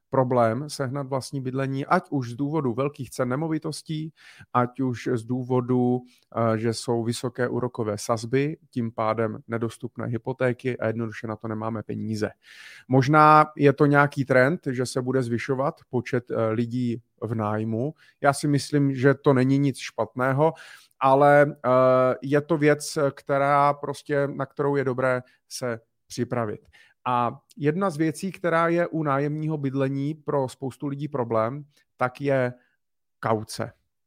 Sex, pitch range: male, 120-145 Hz